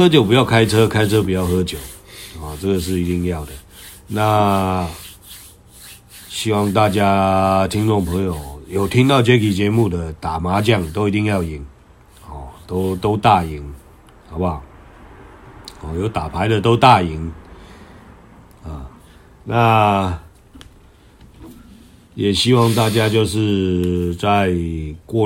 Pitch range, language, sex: 85-105 Hz, Chinese, male